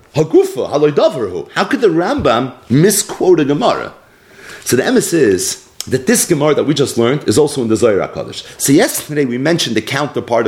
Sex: male